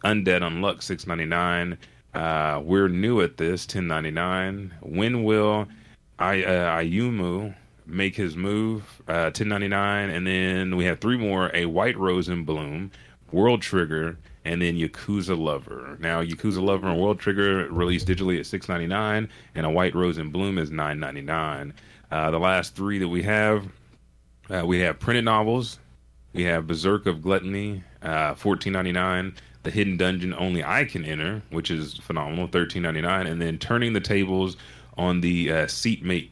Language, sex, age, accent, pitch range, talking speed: English, male, 30-49, American, 80-100 Hz, 180 wpm